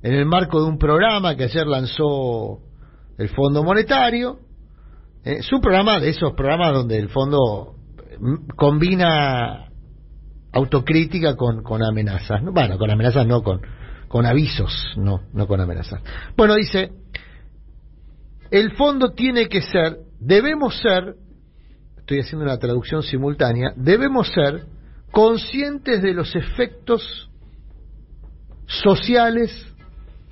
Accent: Argentinian